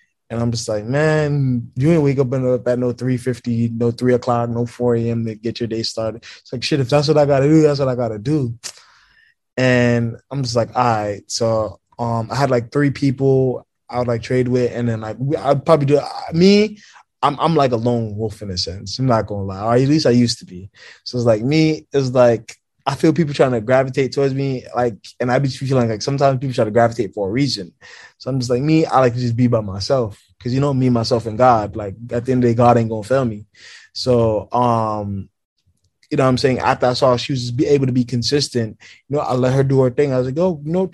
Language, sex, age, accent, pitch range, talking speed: English, male, 20-39, American, 115-140 Hz, 265 wpm